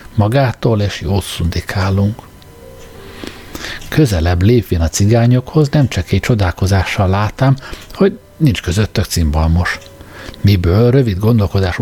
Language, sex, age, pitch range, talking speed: Hungarian, male, 60-79, 95-125 Hz, 100 wpm